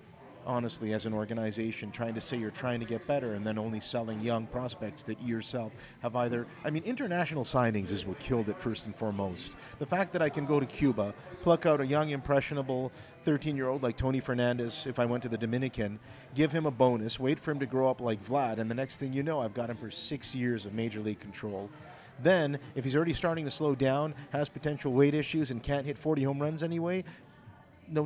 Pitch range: 110-140 Hz